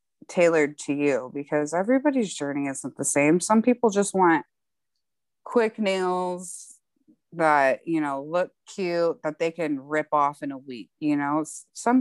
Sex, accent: female, American